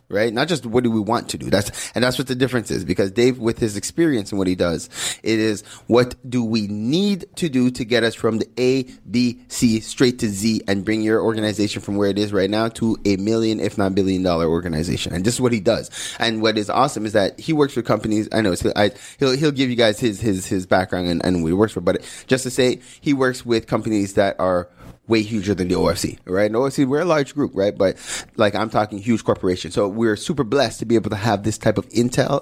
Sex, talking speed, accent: male, 255 wpm, American